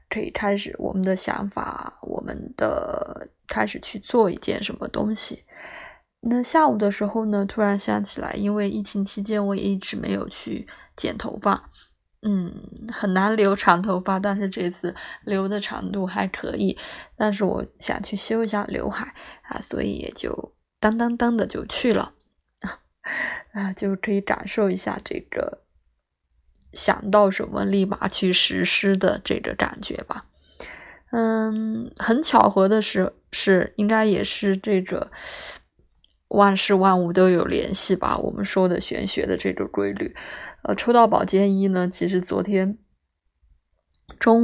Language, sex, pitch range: Chinese, female, 185-210 Hz